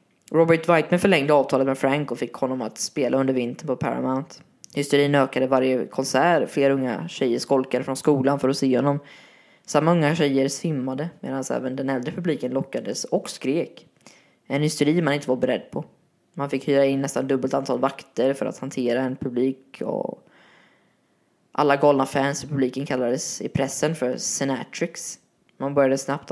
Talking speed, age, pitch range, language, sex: 170 wpm, 20-39, 130-155 Hz, Swedish, female